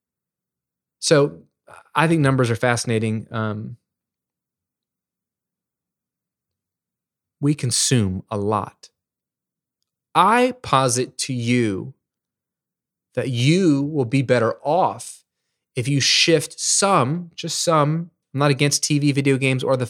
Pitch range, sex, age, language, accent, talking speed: 120-145 Hz, male, 20-39, English, American, 105 wpm